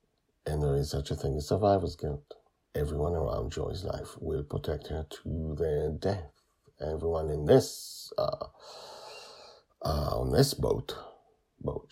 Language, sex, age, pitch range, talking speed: English, male, 50-69, 75-85 Hz, 140 wpm